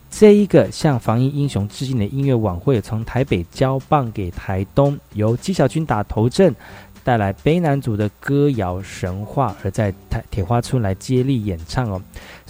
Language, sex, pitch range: Chinese, male, 100-140 Hz